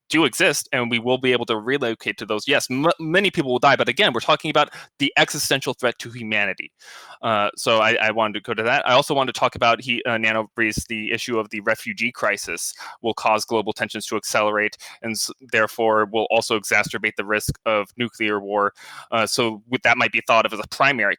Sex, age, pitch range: male, 20-39, 115-145 Hz